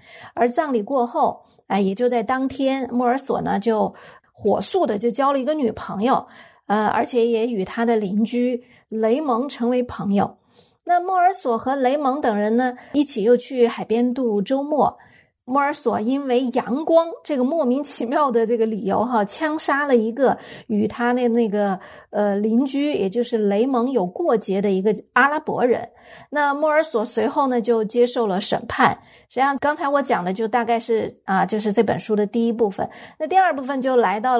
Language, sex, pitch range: Chinese, female, 230-285 Hz